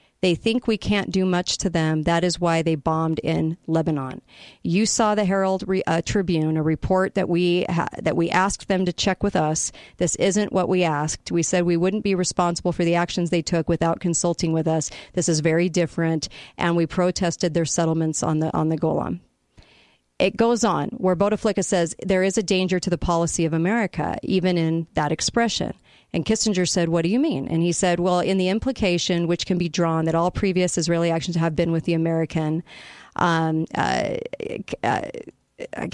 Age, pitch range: 40-59, 165-190 Hz